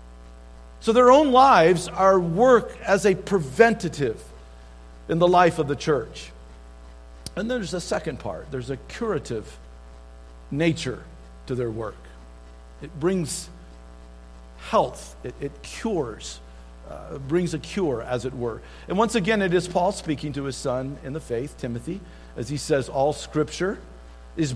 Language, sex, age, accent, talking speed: English, male, 50-69, American, 150 wpm